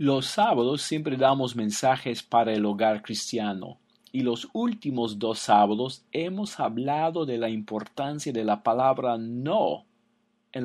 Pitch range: 120-180 Hz